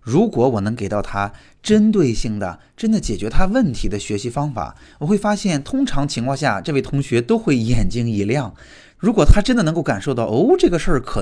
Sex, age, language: male, 20-39, Chinese